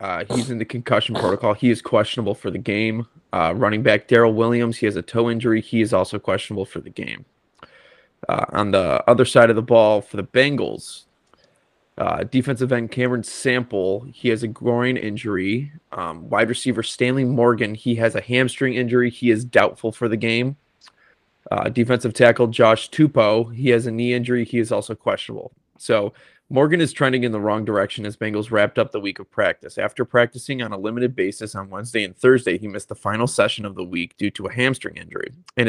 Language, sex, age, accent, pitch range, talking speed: English, male, 20-39, American, 105-125 Hz, 200 wpm